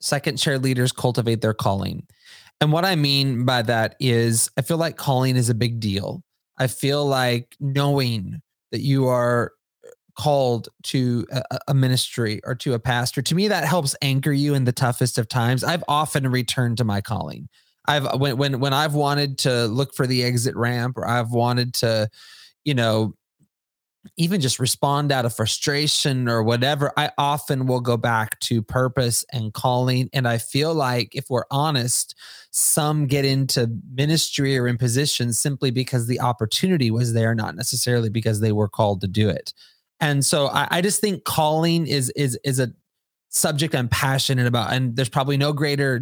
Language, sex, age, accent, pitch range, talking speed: English, male, 20-39, American, 120-140 Hz, 180 wpm